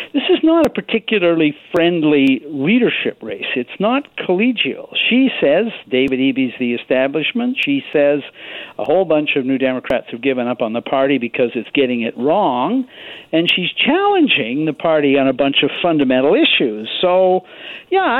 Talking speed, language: 160 wpm, English